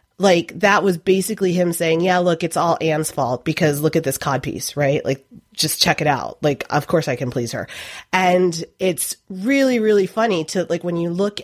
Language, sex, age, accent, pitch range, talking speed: English, female, 30-49, American, 150-180 Hz, 210 wpm